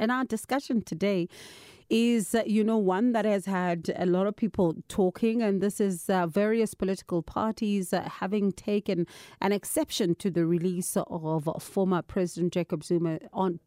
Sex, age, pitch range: female, 40-59, 170-205 Hz